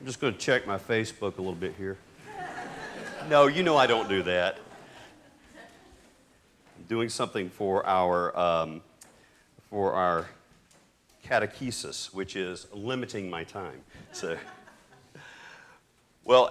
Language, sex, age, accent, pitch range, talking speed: English, male, 50-69, American, 115-165 Hz, 125 wpm